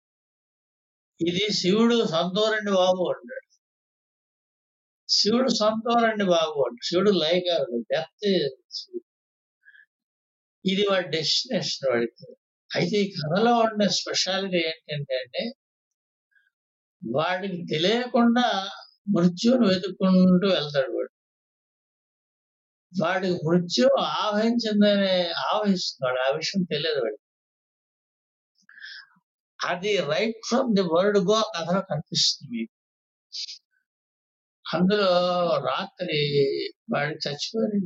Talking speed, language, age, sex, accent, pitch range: 80 wpm, Telugu, 60-79, male, native, 160-210 Hz